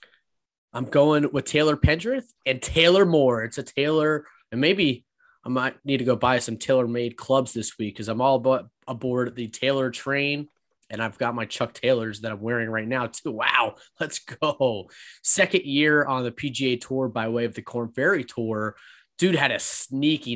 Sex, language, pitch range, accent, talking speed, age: male, English, 115-140 Hz, American, 185 wpm, 20-39